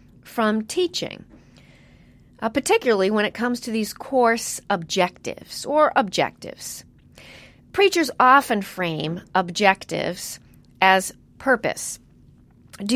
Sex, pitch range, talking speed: female, 190-245 Hz, 95 wpm